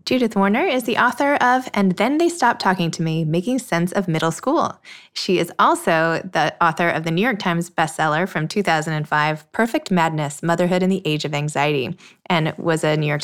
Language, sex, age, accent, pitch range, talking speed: English, female, 20-39, American, 160-205 Hz, 200 wpm